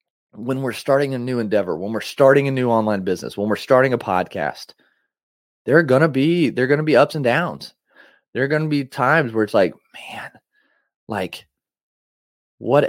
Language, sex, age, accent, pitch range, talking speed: English, male, 30-49, American, 115-140 Hz, 185 wpm